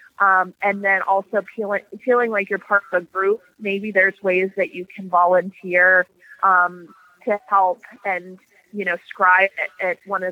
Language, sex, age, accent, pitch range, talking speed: English, female, 30-49, American, 185-210 Hz, 175 wpm